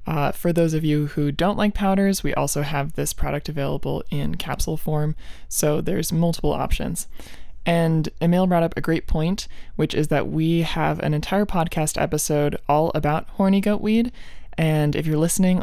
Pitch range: 145-170 Hz